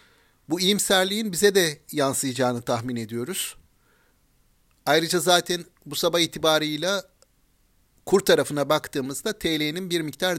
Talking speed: 105 wpm